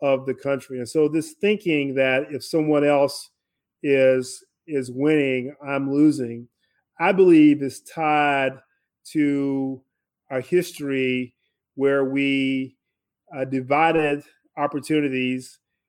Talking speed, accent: 105 wpm, American